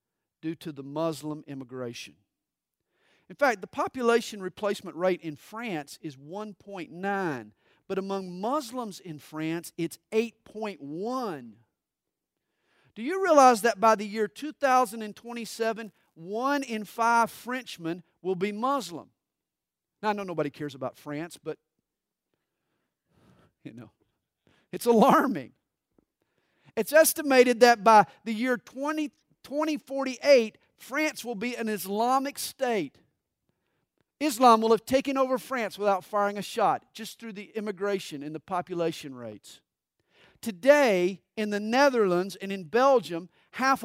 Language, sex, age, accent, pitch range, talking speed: English, male, 50-69, American, 185-250 Hz, 125 wpm